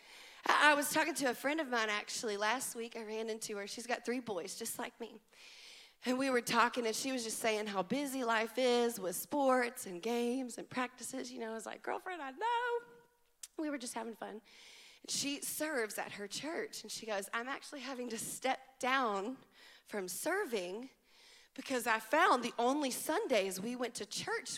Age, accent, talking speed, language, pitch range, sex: 30-49, American, 195 wpm, English, 220-295 Hz, female